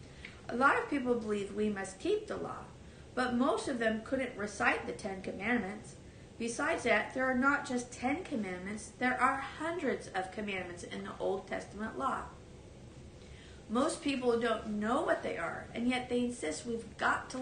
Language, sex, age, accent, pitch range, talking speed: English, female, 40-59, American, 210-255 Hz, 175 wpm